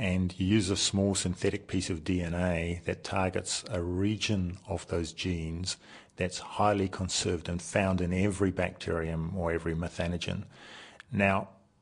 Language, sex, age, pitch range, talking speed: English, male, 50-69, 85-100 Hz, 140 wpm